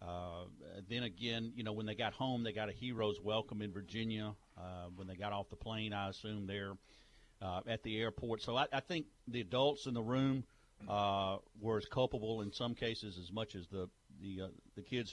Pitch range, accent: 100-120 Hz, American